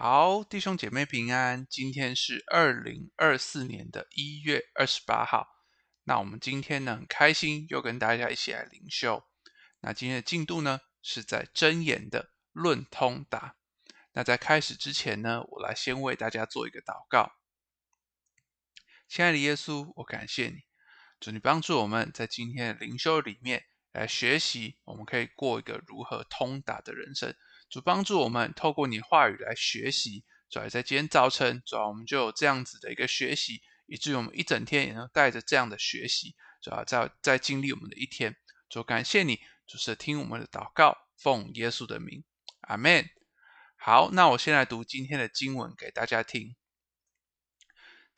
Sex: male